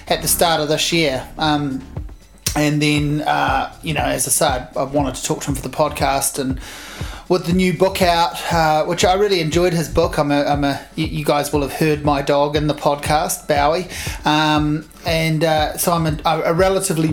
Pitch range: 145-165 Hz